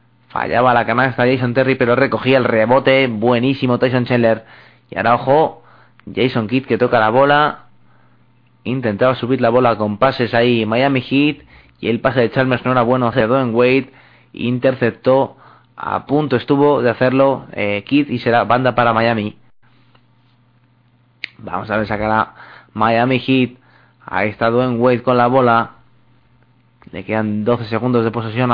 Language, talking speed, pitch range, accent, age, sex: Spanish, 155 wpm, 115-140 Hz, Spanish, 20-39, male